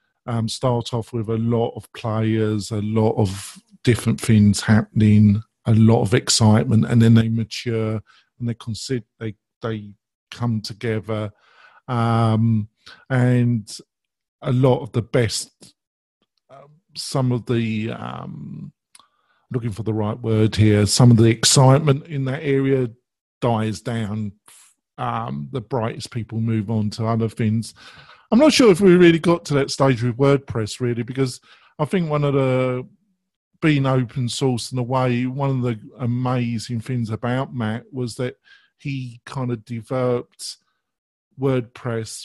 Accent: British